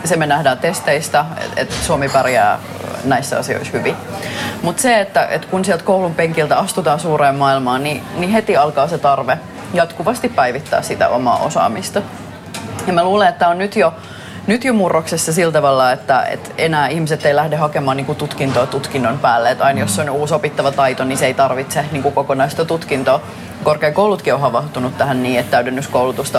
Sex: female